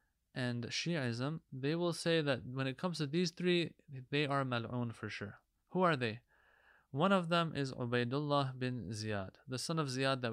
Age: 20-39